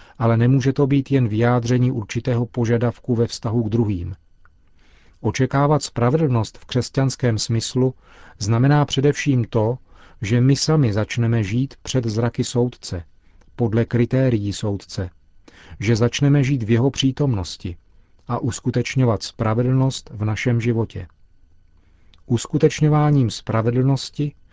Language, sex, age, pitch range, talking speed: Czech, male, 40-59, 95-130 Hz, 110 wpm